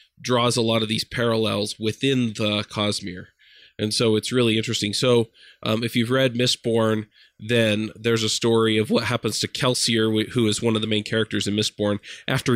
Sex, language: male, English